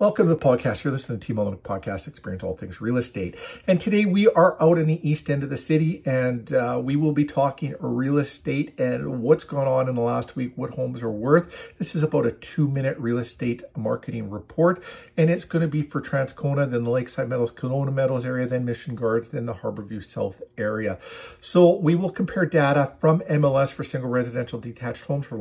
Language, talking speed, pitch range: English, 220 wpm, 120-155 Hz